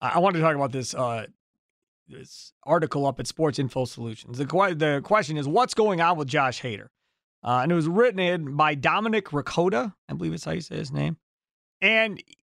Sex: male